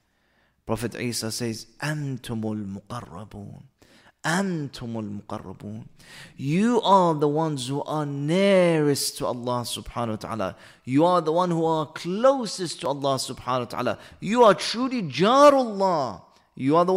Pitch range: 135-195 Hz